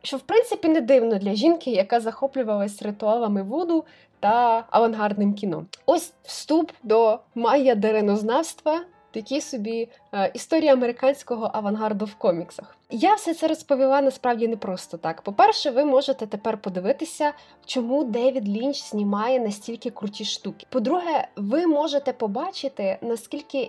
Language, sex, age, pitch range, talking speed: Ukrainian, female, 20-39, 215-280 Hz, 130 wpm